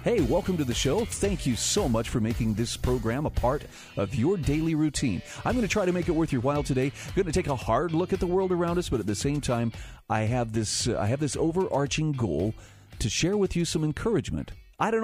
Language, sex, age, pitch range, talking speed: English, male, 40-59, 110-160 Hz, 245 wpm